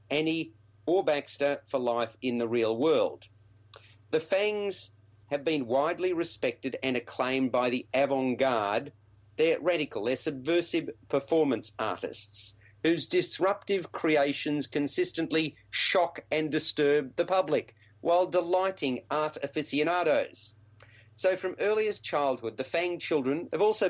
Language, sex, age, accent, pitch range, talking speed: English, male, 40-59, Australian, 110-160 Hz, 125 wpm